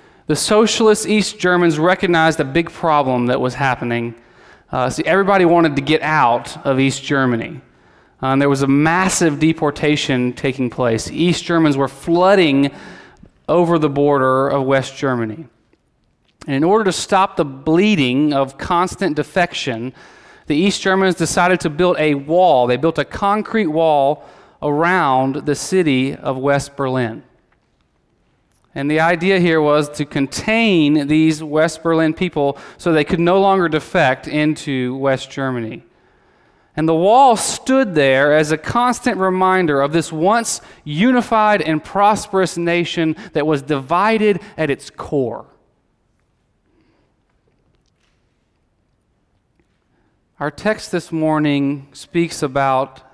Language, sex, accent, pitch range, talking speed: English, male, American, 135-175 Hz, 130 wpm